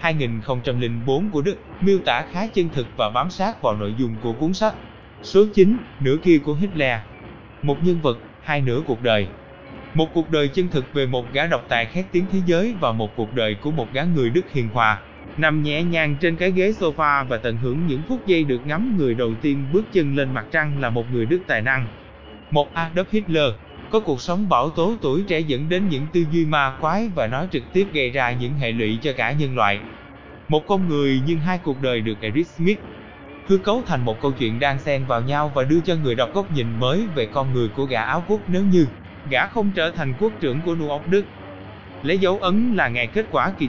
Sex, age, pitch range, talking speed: male, 20-39, 120-180 Hz, 230 wpm